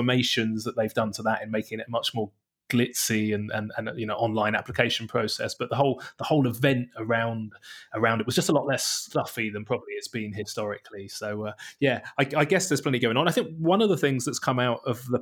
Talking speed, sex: 240 wpm, male